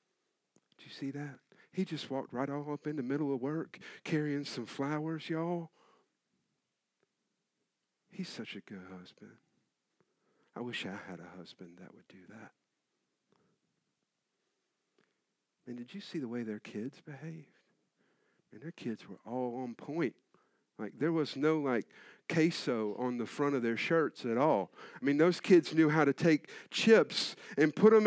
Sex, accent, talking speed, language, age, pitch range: male, American, 160 wpm, English, 50-69, 130-210 Hz